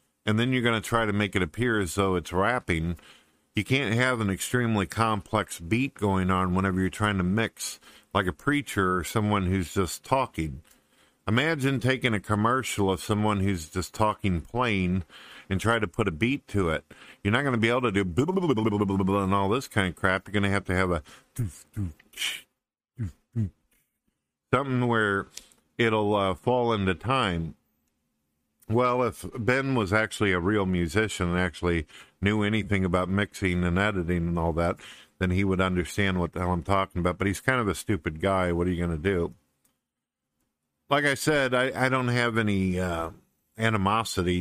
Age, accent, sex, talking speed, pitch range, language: 50-69, American, male, 180 wpm, 95-110 Hz, English